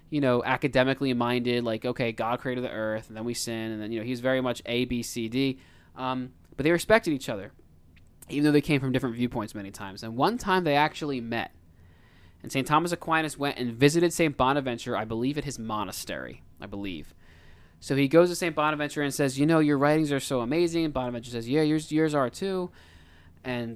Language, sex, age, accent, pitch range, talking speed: English, male, 20-39, American, 115-155 Hz, 215 wpm